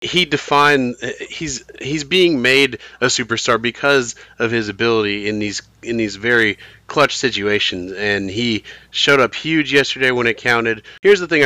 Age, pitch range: 30-49, 105-130 Hz